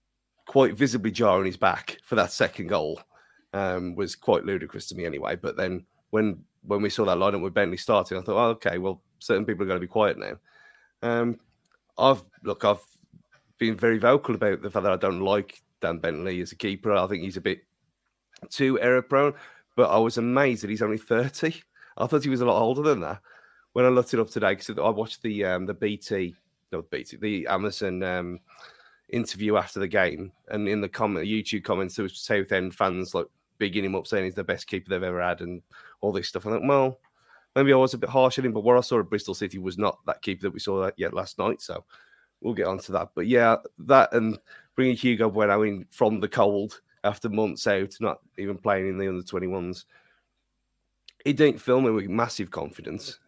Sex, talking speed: male, 225 wpm